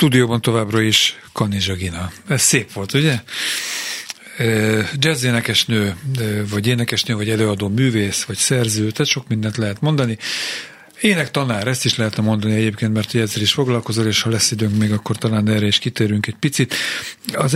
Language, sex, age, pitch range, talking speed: Hungarian, male, 40-59, 110-130 Hz, 155 wpm